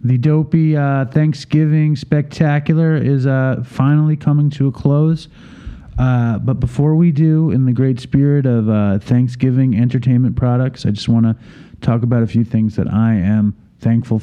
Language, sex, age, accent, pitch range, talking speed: English, male, 40-59, American, 100-135 Hz, 165 wpm